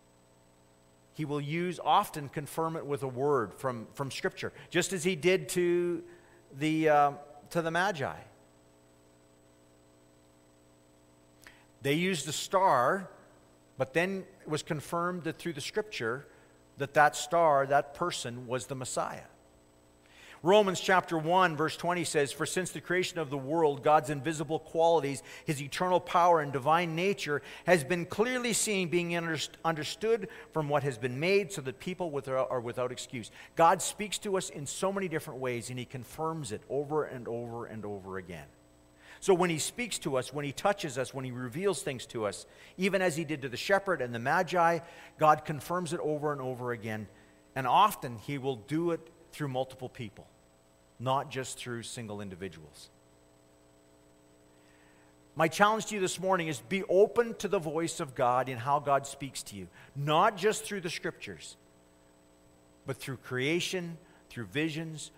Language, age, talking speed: English, 50-69, 165 wpm